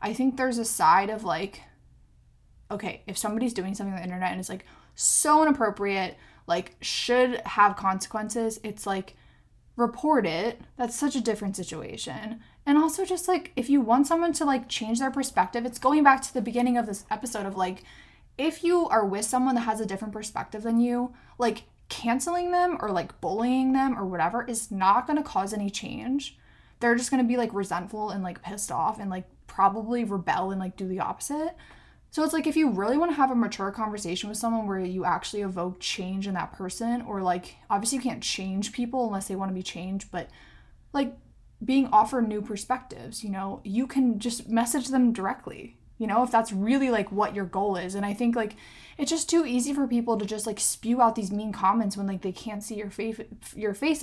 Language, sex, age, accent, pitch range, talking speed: English, female, 20-39, American, 200-260 Hz, 210 wpm